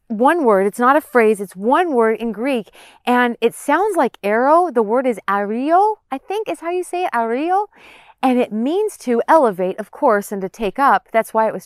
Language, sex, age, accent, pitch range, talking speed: English, female, 40-59, American, 225-295 Hz, 220 wpm